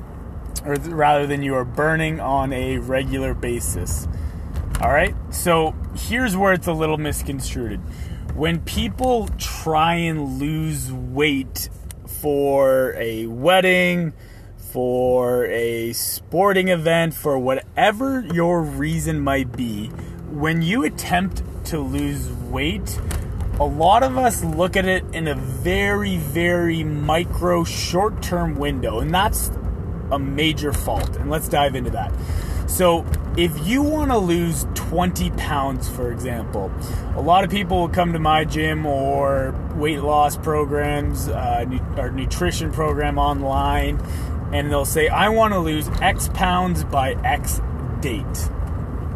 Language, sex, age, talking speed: English, male, 30-49, 130 wpm